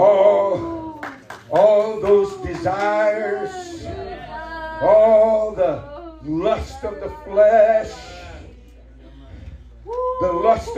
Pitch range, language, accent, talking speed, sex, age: 255-330 Hz, English, American, 65 wpm, male, 60-79